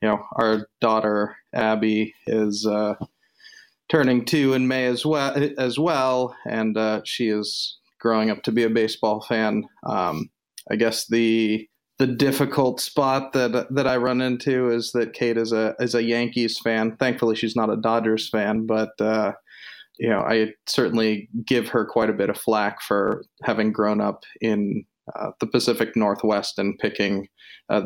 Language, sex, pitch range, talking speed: English, male, 110-125 Hz, 170 wpm